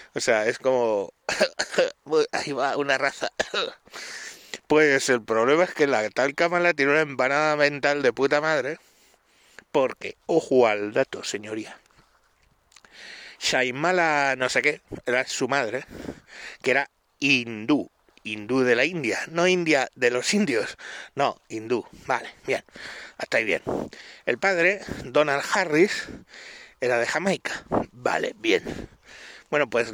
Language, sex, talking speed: Spanish, male, 130 wpm